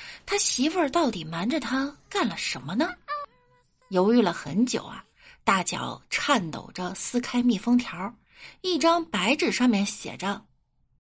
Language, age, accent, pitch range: Chinese, 20-39, native, 200-300 Hz